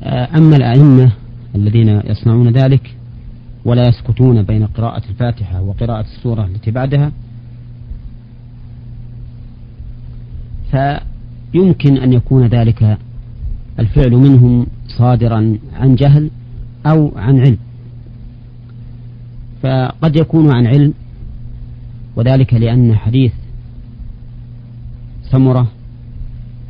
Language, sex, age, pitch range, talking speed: Arabic, male, 40-59, 115-125 Hz, 75 wpm